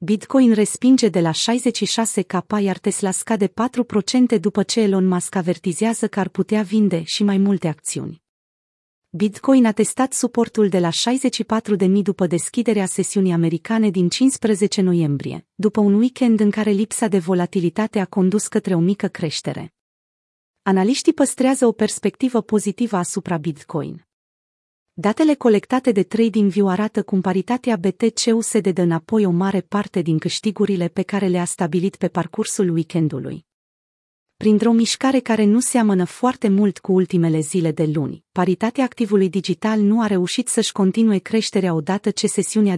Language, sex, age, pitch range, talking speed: Romanian, female, 30-49, 185-225 Hz, 145 wpm